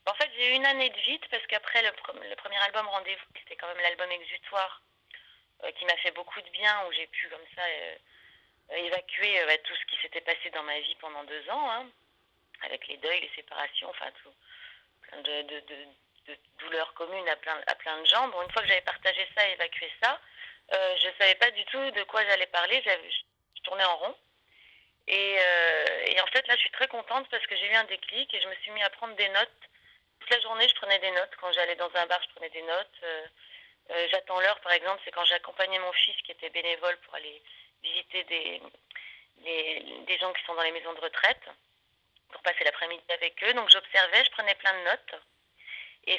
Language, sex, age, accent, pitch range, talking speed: French, female, 30-49, French, 170-225 Hz, 225 wpm